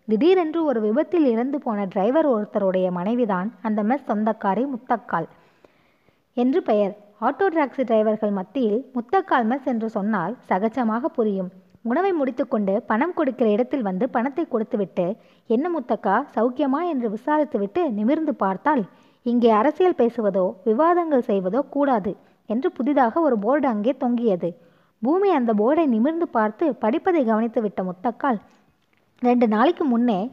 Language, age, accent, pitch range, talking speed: Tamil, 20-39, native, 210-285 Hz, 125 wpm